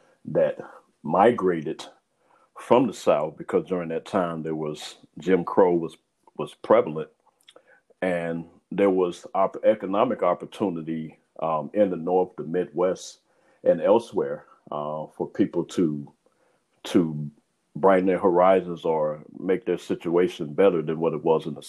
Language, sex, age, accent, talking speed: English, male, 50-69, American, 135 wpm